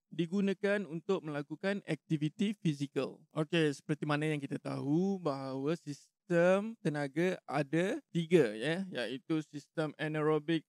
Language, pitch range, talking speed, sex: Malay, 145-170 Hz, 110 wpm, male